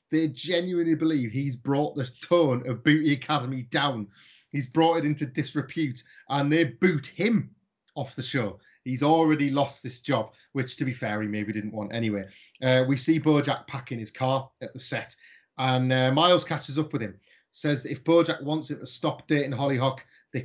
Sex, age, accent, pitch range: male, 30-49, British, 115-150 Hz